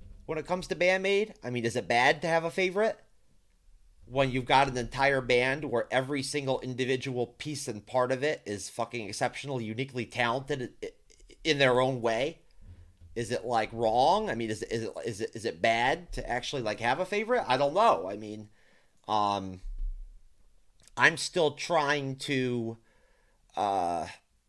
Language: English